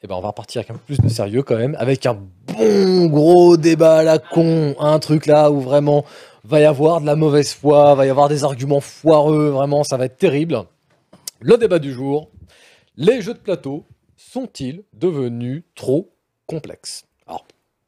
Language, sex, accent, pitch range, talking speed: French, male, French, 125-160 Hz, 190 wpm